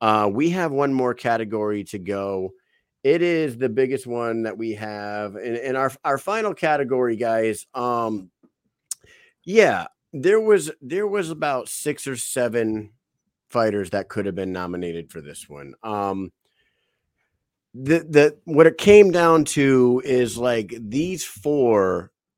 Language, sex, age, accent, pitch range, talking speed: English, male, 30-49, American, 105-135 Hz, 145 wpm